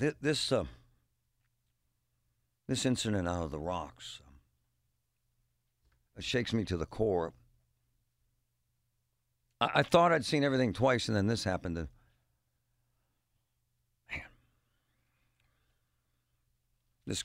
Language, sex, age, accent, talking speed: English, male, 60-79, American, 100 wpm